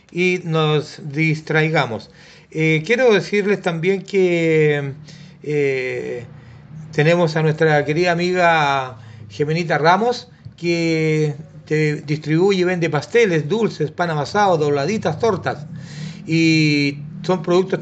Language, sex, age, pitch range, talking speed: Spanish, male, 40-59, 155-195 Hz, 100 wpm